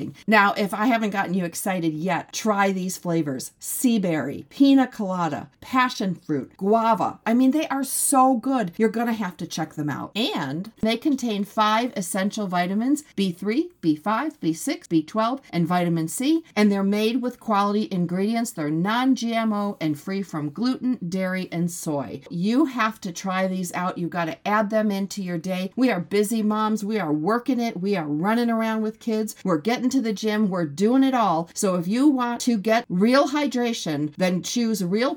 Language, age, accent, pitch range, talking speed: English, 50-69, American, 180-245 Hz, 185 wpm